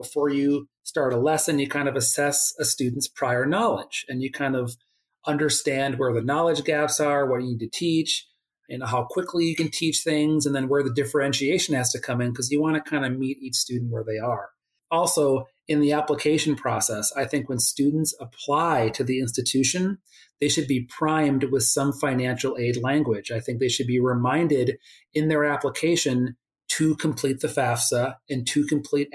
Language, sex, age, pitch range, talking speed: English, male, 40-59, 125-150 Hz, 195 wpm